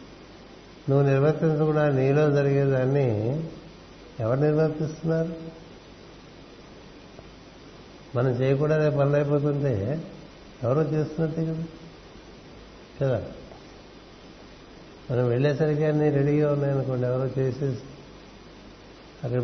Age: 60-79